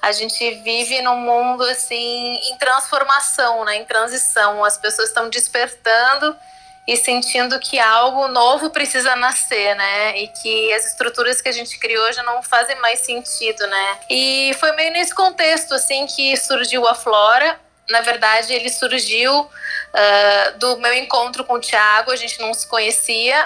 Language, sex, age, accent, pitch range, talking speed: Portuguese, female, 20-39, Brazilian, 230-295 Hz, 160 wpm